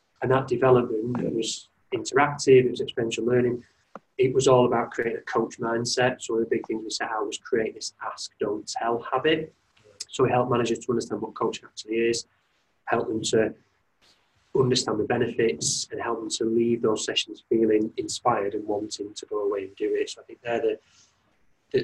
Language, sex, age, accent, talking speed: English, male, 20-39, British, 200 wpm